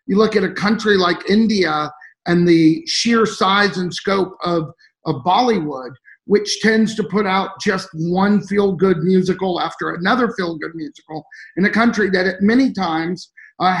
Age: 50-69